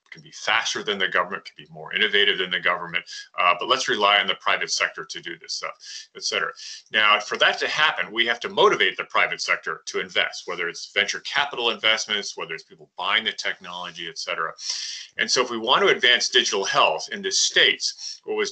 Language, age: English, 30-49